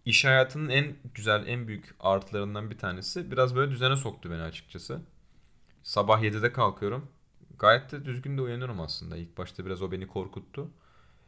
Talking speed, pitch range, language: 160 wpm, 90-130 Hz, Turkish